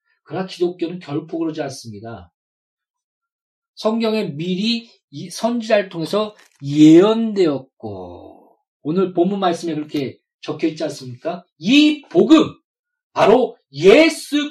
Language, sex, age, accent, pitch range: Korean, male, 40-59, native, 165-245 Hz